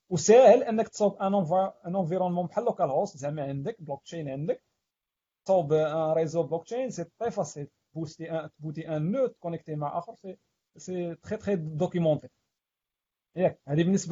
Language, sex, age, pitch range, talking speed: Arabic, male, 40-59, 145-200 Hz, 95 wpm